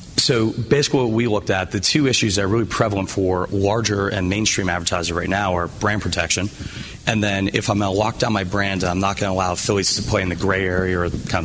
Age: 30-49